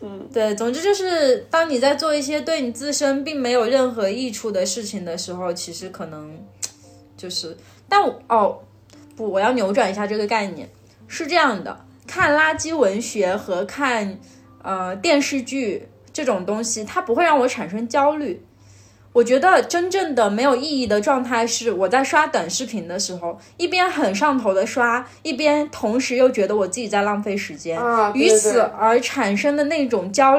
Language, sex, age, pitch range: Chinese, female, 20-39, 195-285 Hz